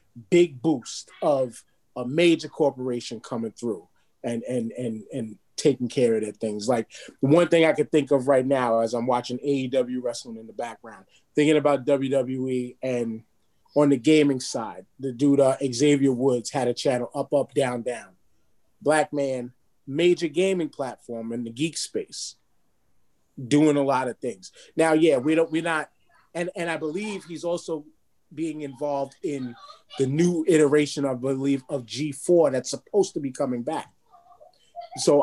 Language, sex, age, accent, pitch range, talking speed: English, male, 30-49, American, 125-165 Hz, 165 wpm